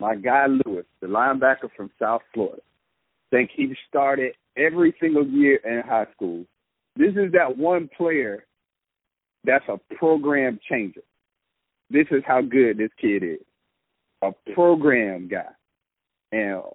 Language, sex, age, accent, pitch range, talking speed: English, male, 50-69, American, 115-185 Hz, 135 wpm